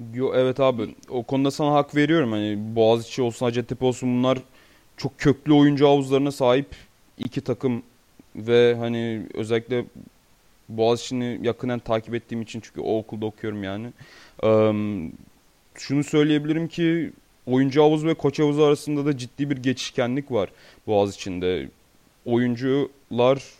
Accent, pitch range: native, 115-135 Hz